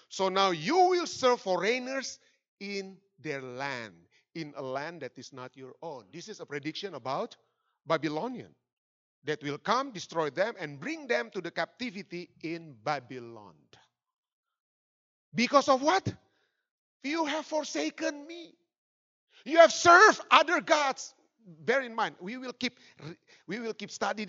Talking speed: 145 wpm